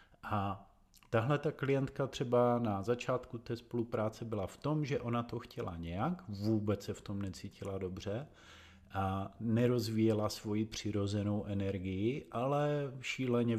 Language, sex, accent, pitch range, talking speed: Czech, male, native, 100-120 Hz, 135 wpm